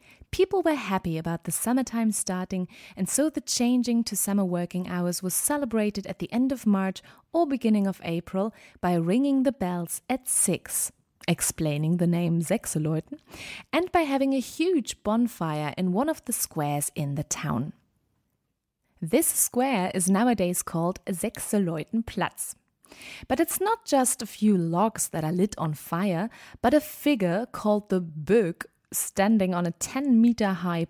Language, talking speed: English, 150 wpm